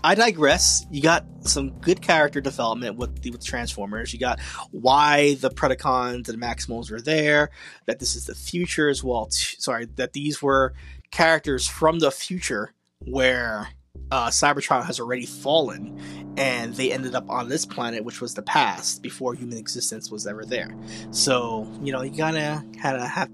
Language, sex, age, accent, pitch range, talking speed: English, male, 20-39, American, 115-140 Hz, 175 wpm